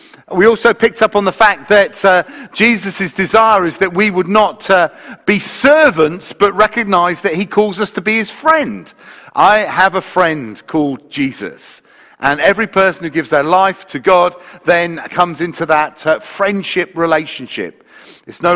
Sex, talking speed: male, 170 wpm